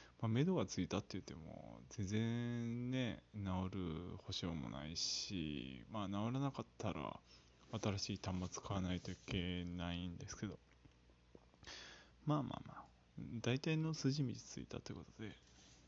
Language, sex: Japanese, male